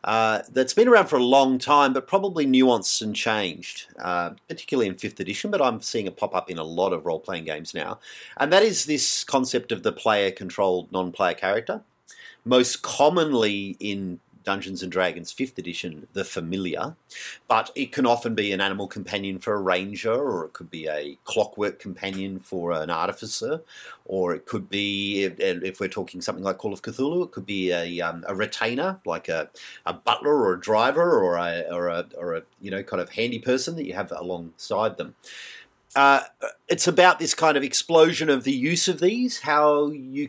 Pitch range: 100-145 Hz